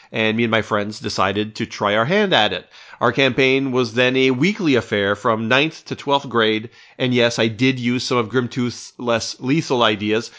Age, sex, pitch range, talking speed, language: 40-59, male, 115-150 Hz, 200 wpm, English